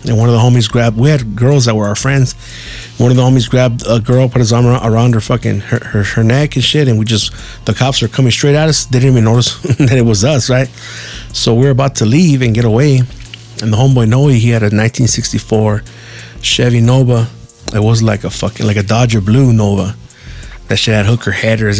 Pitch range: 110-130 Hz